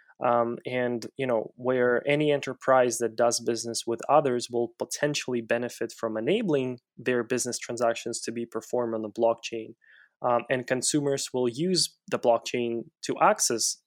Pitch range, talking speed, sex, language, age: 115-140 Hz, 150 wpm, male, English, 20-39